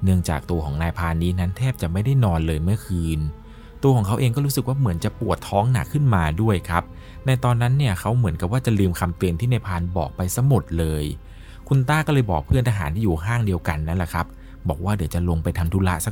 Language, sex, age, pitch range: Thai, male, 20-39, 85-120 Hz